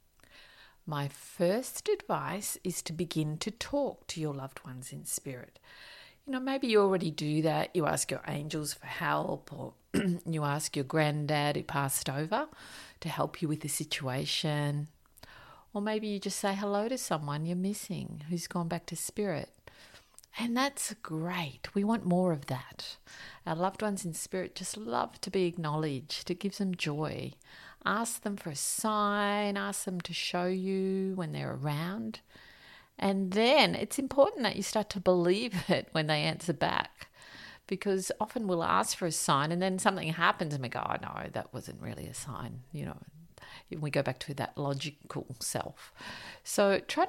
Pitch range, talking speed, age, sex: 150-200 Hz, 175 wpm, 50-69, female